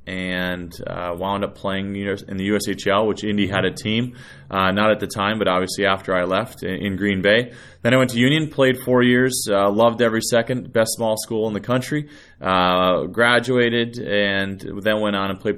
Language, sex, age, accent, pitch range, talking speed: English, male, 20-39, American, 95-120 Hz, 205 wpm